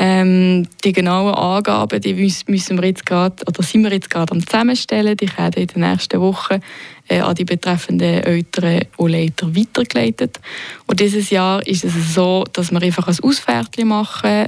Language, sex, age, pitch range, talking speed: German, female, 20-39, 175-210 Hz, 175 wpm